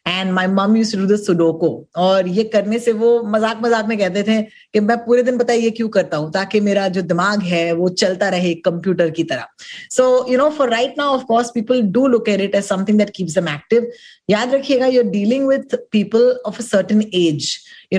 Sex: female